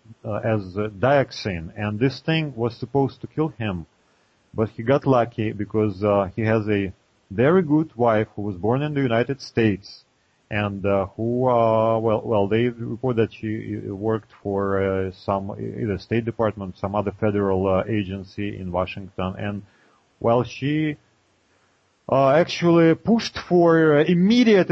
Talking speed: 155 wpm